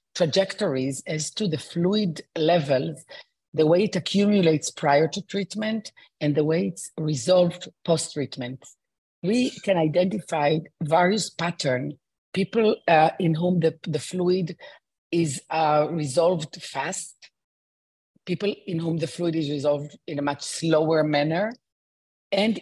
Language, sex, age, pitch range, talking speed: English, female, 40-59, 150-180 Hz, 125 wpm